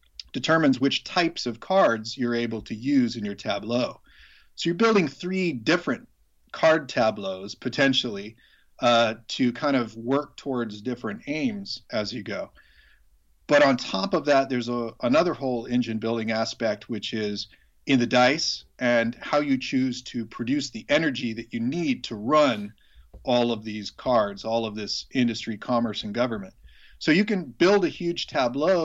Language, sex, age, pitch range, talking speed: English, male, 40-59, 115-160 Hz, 160 wpm